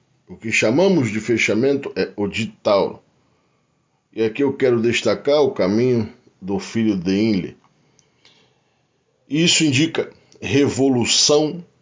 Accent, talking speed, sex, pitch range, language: Brazilian, 110 wpm, male, 105-140 Hz, Portuguese